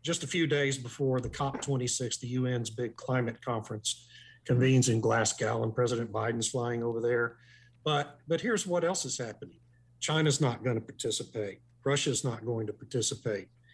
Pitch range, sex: 120-135 Hz, male